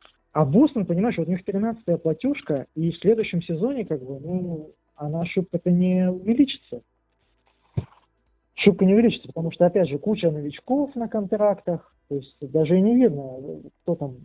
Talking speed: 155 wpm